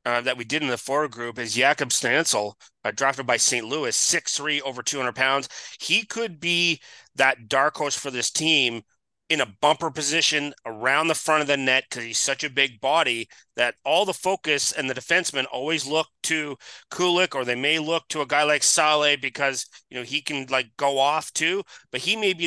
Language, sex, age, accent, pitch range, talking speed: English, male, 30-49, American, 125-155 Hz, 210 wpm